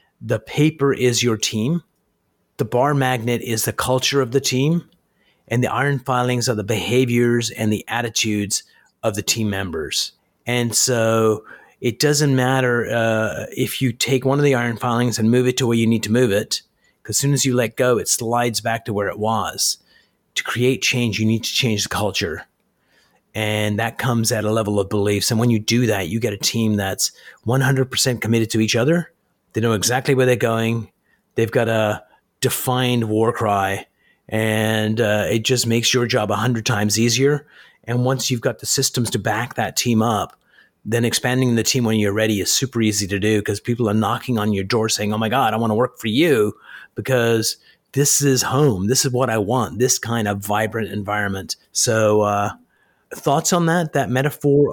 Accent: American